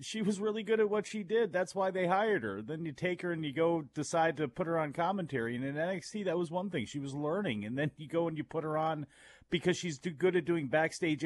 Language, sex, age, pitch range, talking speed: English, male, 40-59, 140-170 Hz, 275 wpm